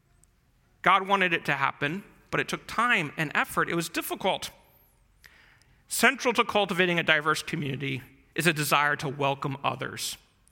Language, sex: English, male